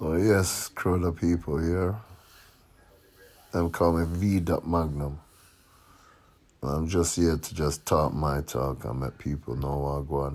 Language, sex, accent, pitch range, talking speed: English, male, American, 75-95 Hz, 155 wpm